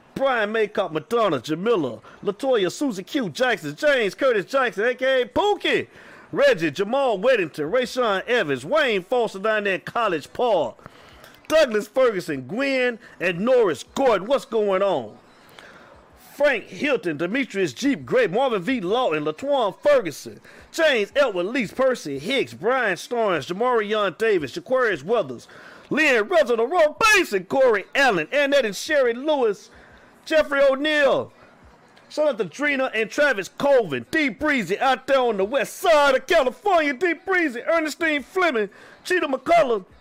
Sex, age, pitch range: male, 40-59, 225-315 Hz